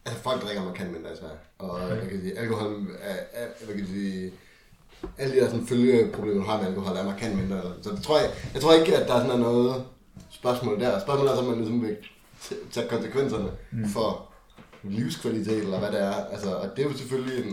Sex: male